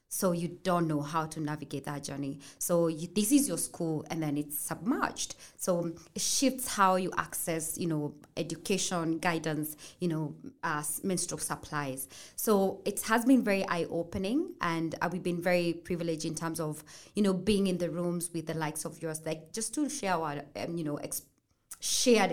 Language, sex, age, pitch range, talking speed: English, female, 20-39, 155-190 Hz, 190 wpm